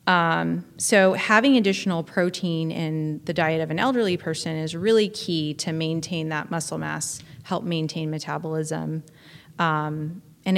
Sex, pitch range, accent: female, 155-175 Hz, American